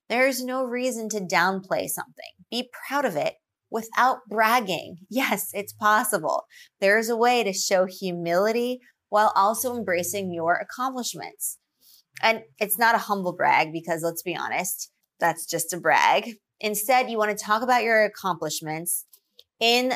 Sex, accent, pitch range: female, American, 180-235 Hz